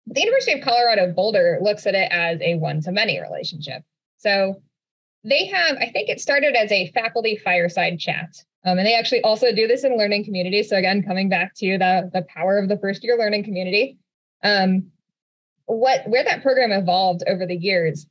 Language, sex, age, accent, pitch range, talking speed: English, female, 20-39, American, 175-215 Hz, 185 wpm